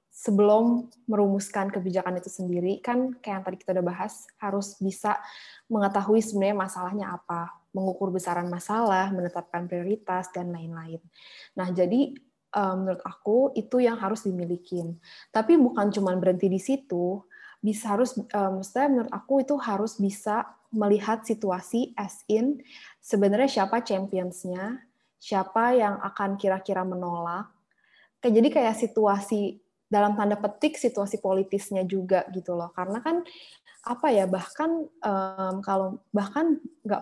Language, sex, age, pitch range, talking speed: Indonesian, female, 20-39, 185-225 Hz, 125 wpm